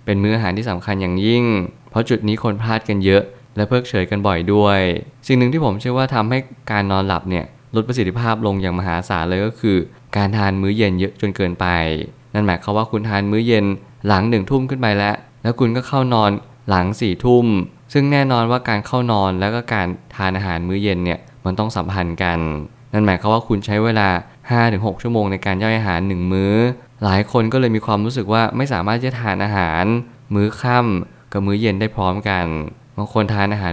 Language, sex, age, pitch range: Thai, male, 20-39, 95-115 Hz